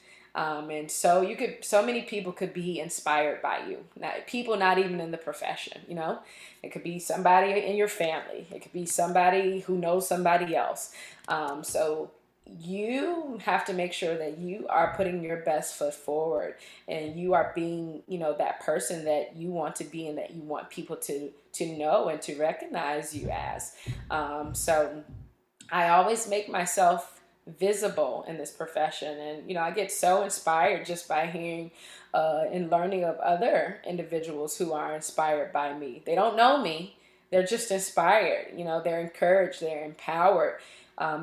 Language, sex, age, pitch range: English, female, 20-39, 155-180 Hz